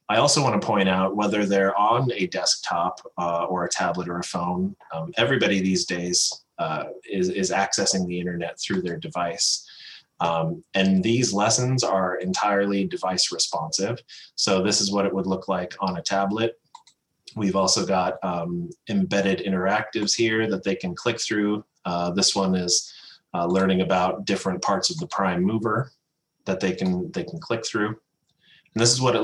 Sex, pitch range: male, 90-115 Hz